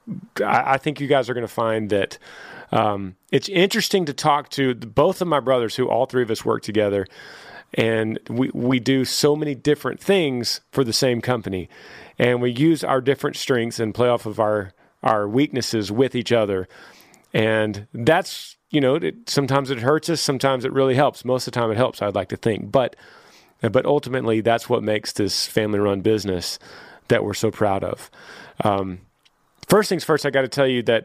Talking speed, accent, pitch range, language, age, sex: 195 wpm, American, 110-135 Hz, English, 30-49, male